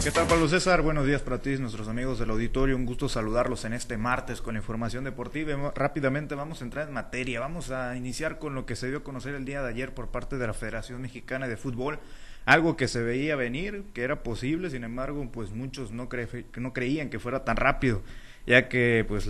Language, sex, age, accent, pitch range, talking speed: Spanish, male, 30-49, Mexican, 120-140 Hz, 225 wpm